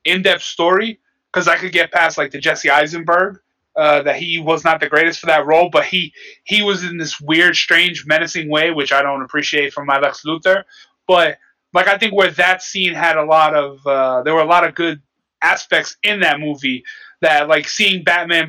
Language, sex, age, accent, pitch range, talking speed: English, male, 20-39, American, 160-195 Hz, 210 wpm